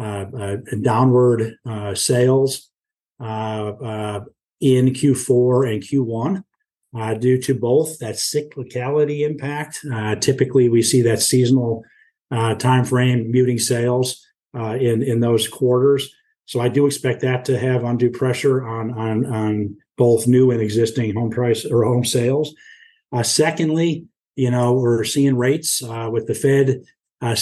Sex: male